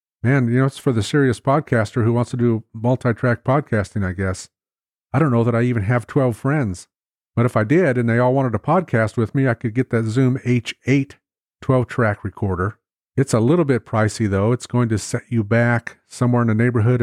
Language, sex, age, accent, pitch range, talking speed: English, male, 40-59, American, 110-135 Hz, 215 wpm